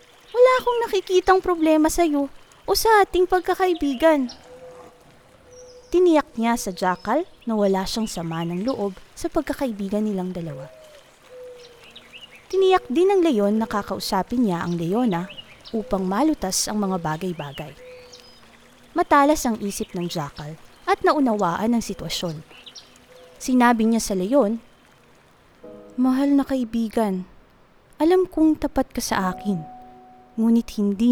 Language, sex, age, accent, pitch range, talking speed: Filipino, female, 20-39, native, 185-280 Hz, 120 wpm